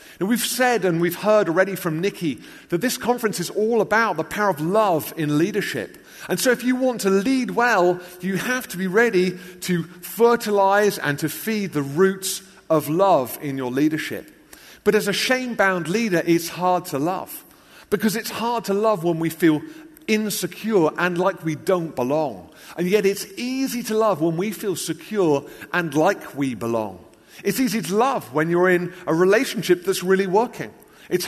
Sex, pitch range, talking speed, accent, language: male, 165-220 Hz, 180 wpm, British, English